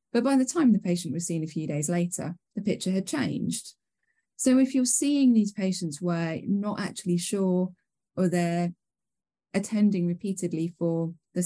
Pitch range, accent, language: 155-195 Hz, British, English